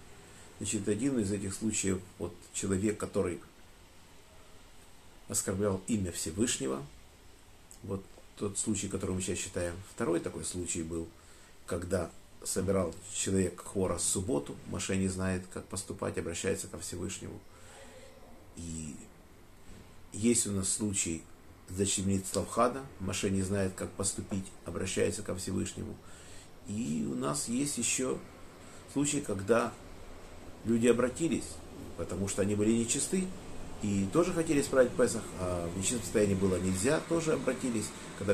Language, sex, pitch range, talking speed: Russian, male, 90-105 Hz, 125 wpm